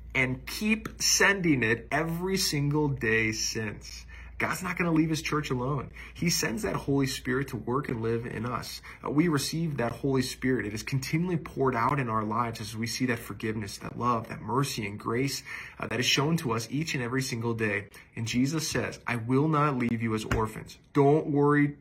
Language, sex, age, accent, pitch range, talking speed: English, male, 20-39, American, 115-145 Hz, 205 wpm